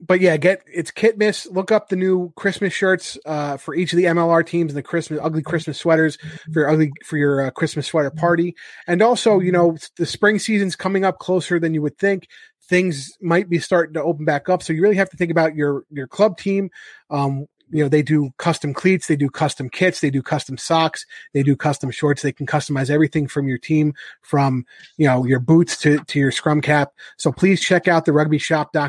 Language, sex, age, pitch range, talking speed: English, male, 30-49, 140-175 Hz, 225 wpm